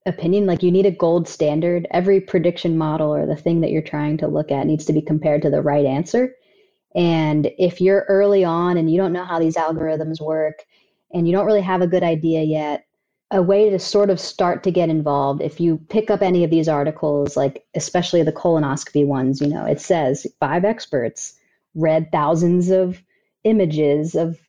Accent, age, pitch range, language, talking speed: American, 30-49, 155-180 Hz, English, 200 wpm